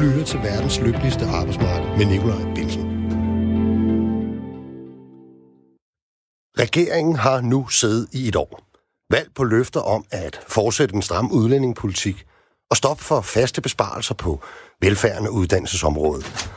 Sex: male